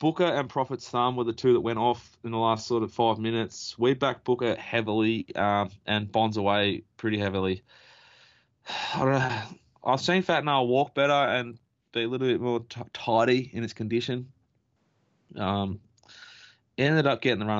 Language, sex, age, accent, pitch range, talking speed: English, male, 20-39, Australian, 105-130 Hz, 180 wpm